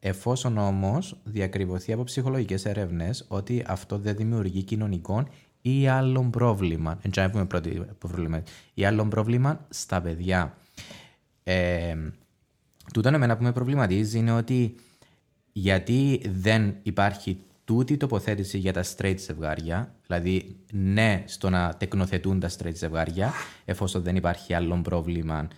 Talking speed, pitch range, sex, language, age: 115 wpm, 90-110 Hz, male, Greek, 20-39